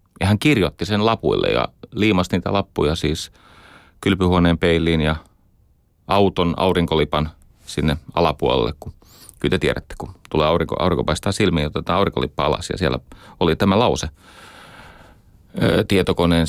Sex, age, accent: male, 30-49, native